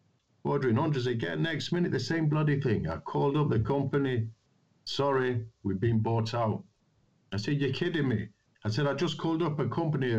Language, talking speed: Finnish, 190 wpm